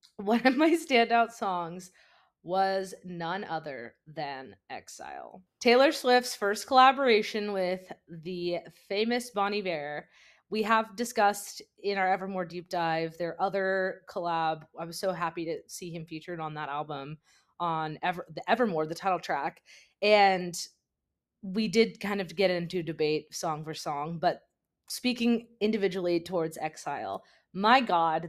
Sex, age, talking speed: female, 20-39, 140 wpm